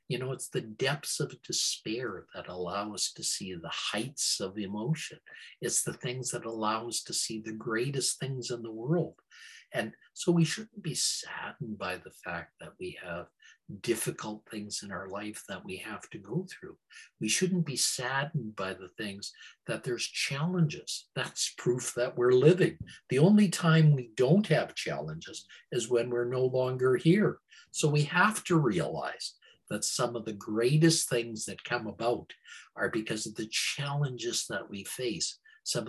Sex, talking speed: male, 175 wpm